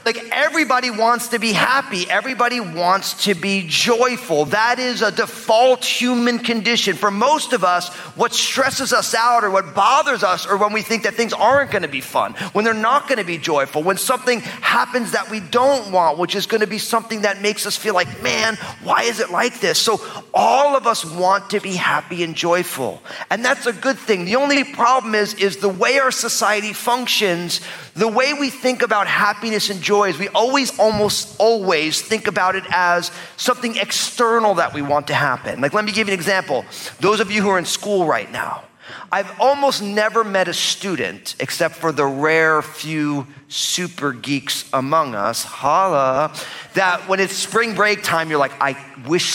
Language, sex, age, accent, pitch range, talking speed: English, male, 30-49, American, 175-235 Hz, 195 wpm